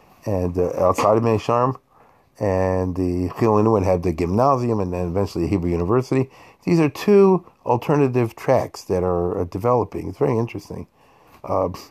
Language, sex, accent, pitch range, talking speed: English, male, American, 90-115 Hz, 145 wpm